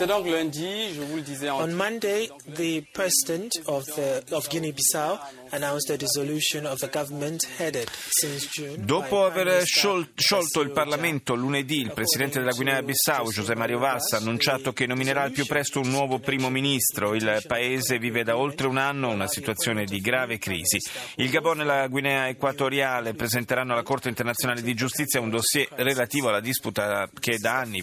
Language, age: Italian, 30-49